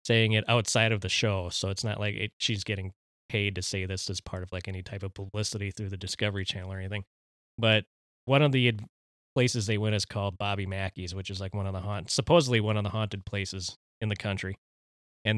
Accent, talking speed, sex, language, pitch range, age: American, 230 wpm, male, English, 95-110 Hz, 20-39